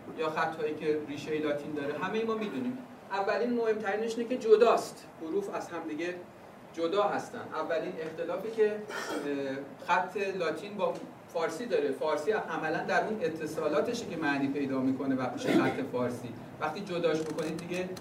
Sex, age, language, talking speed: male, 40-59, Persian, 155 wpm